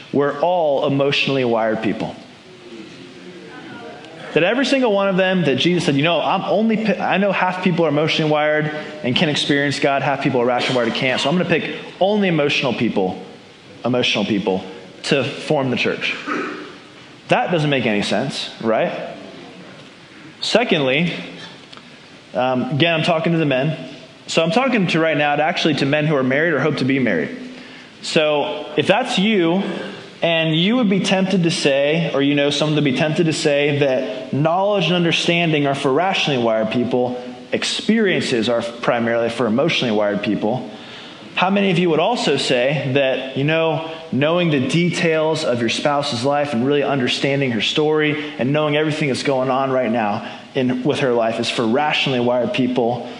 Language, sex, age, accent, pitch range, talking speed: English, male, 20-39, American, 130-170 Hz, 175 wpm